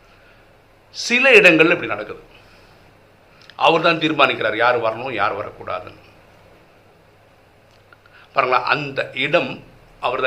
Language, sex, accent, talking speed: Tamil, male, native, 90 wpm